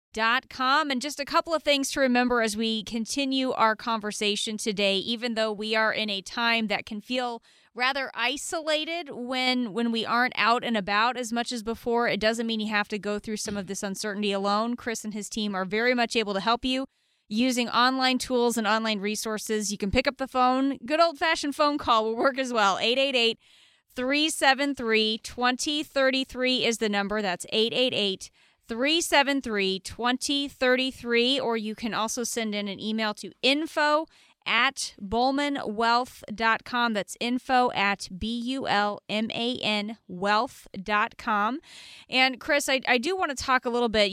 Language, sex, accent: English, female, American